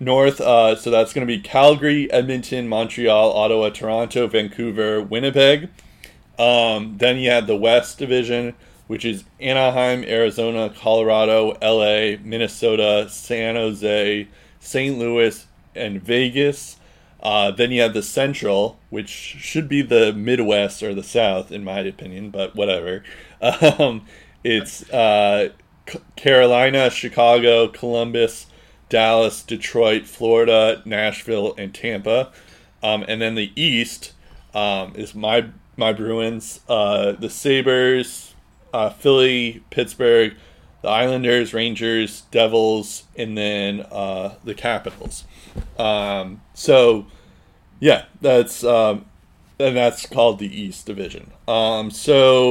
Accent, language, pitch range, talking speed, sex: American, English, 105-125 Hz, 115 wpm, male